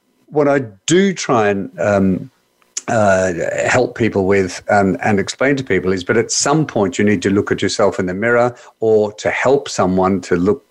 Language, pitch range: English, 100-145 Hz